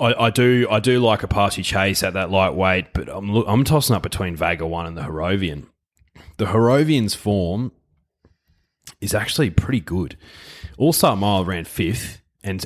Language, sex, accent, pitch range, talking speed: English, male, Australian, 90-110 Hz, 170 wpm